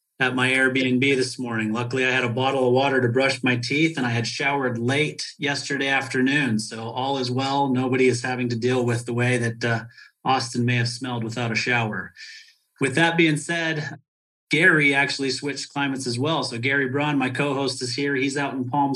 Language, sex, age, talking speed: English, male, 30-49, 205 wpm